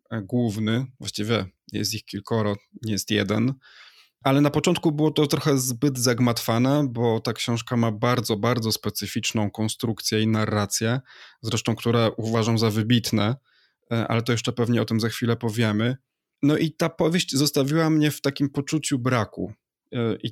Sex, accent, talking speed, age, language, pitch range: male, native, 150 wpm, 20-39, Polish, 110-130 Hz